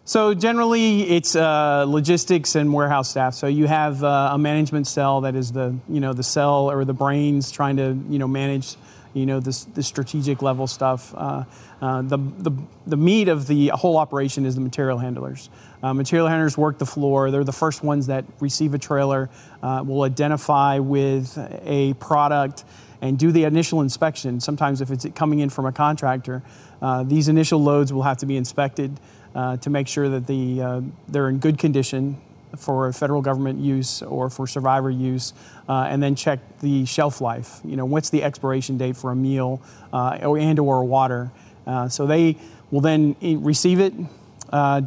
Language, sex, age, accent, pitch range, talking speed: English, male, 40-59, American, 130-150 Hz, 190 wpm